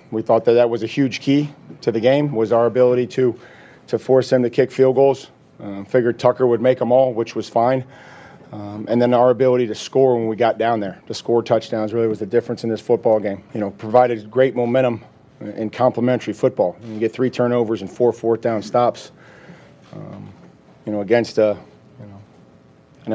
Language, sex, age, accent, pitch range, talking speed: English, male, 40-59, American, 115-125 Hz, 200 wpm